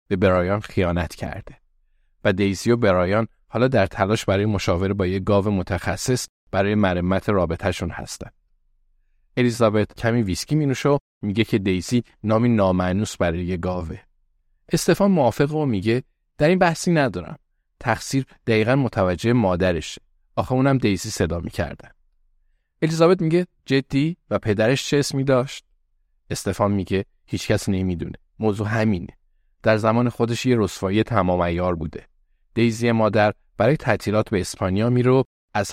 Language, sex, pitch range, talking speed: Persian, male, 90-120 Hz, 140 wpm